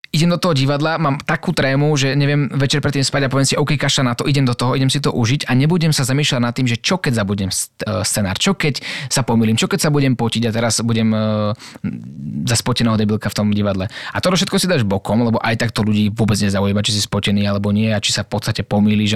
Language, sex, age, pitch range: Slovak, male, 20-39, 110-145 Hz